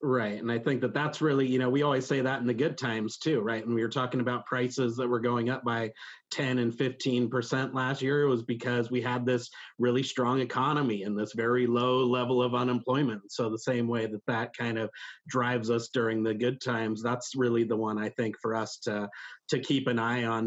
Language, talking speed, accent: English, 230 wpm, American